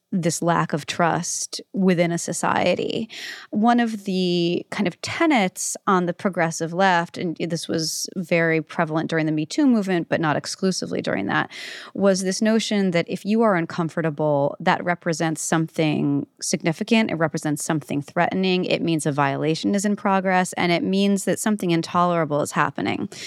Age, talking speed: 30-49, 160 wpm